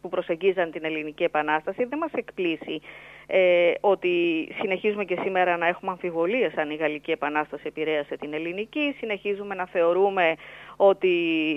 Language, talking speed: Greek, 140 wpm